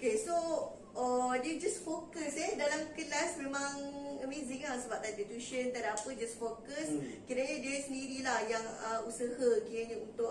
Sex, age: female, 20-39